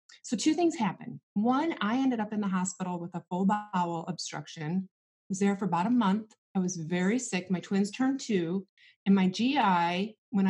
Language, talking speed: English, 200 wpm